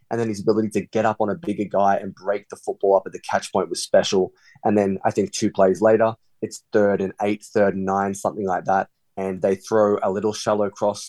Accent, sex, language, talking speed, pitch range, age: Australian, male, English, 250 wpm, 95-110 Hz, 20-39